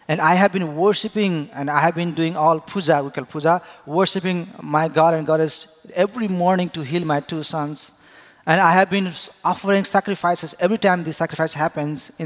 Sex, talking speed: male, 190 wpm